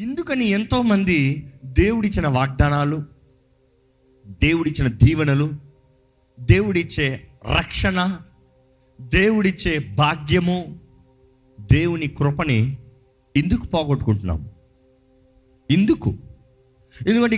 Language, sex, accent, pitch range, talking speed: Telugu, male, native, 125-180 Hz, 55 wpm